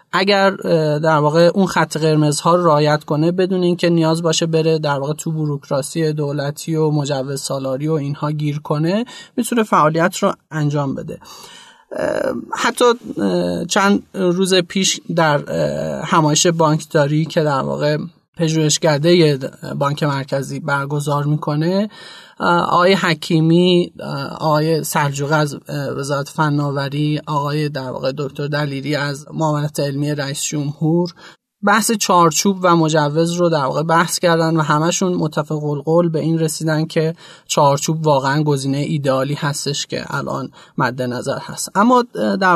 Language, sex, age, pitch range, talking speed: Persian, male, 30-49, 145-175 Hz, 130 wpm